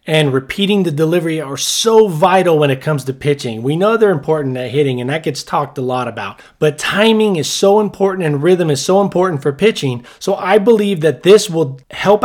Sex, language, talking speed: male, English, 215 wpm